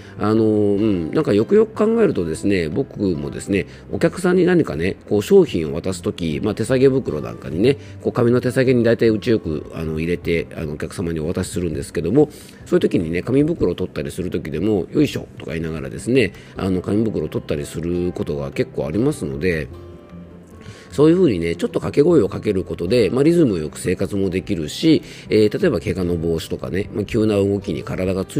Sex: male